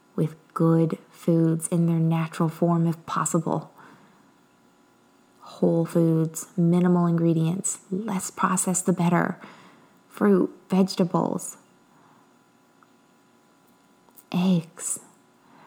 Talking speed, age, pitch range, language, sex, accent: 75 wpm, 20-39, 175-205 Hz, English, female, American